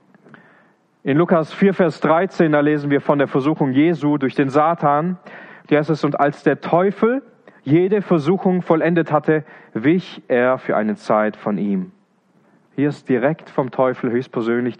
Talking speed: 160 wpm